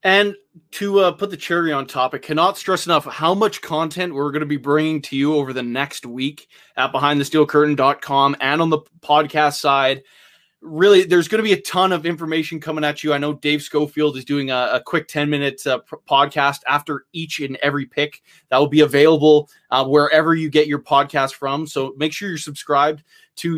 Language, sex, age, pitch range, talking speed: English, male, 20-39, 145-175 Hz, 200 wpm